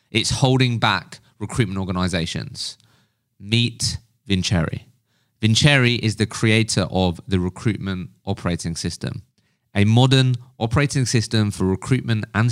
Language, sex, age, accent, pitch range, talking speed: English, male, 20-39, British, 100-130 Hz, 110 wpm